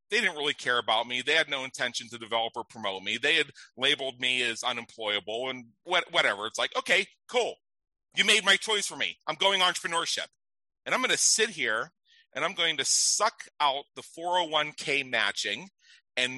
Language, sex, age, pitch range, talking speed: English, male, 40-59, 140-200 Hz, 190 wpm